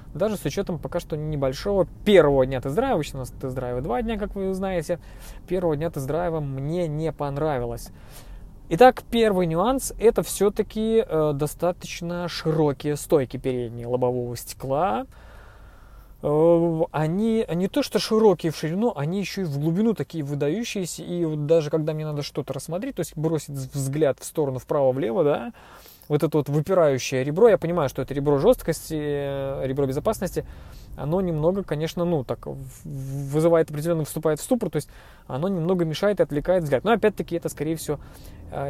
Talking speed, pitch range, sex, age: 160 wpm, 135-180 Hz, male, 20-39